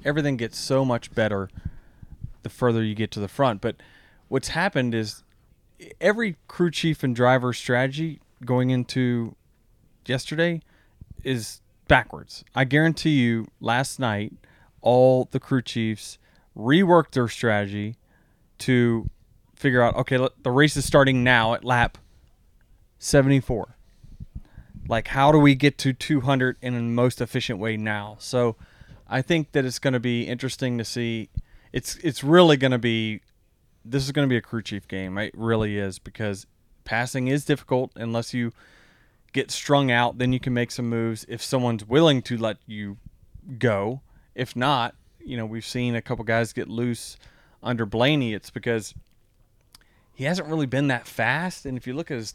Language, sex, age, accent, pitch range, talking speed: English, male, 30-49, American, 115-135 Hz, 160 wpm